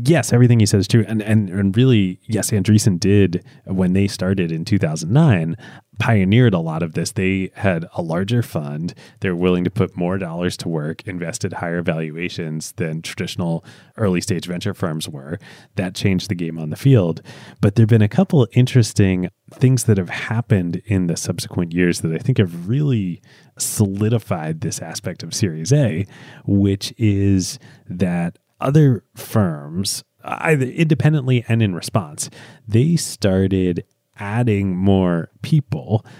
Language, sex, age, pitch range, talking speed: English, male, 30-49, 90-125 Hz, 155 wpm